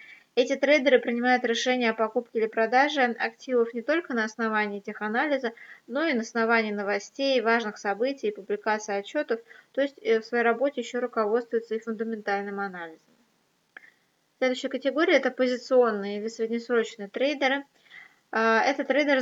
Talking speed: 130 wpm